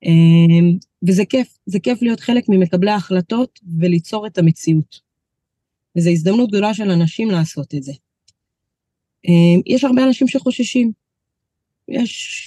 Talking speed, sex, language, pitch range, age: 115 wpm, female, Hebrew, 175-230 Hz, 30-49